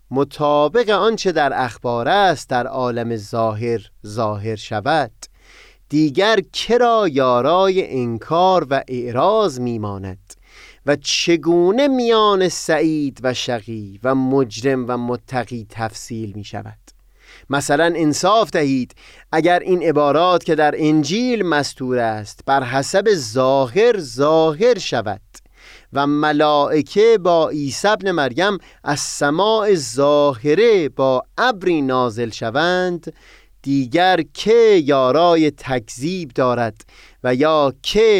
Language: Persian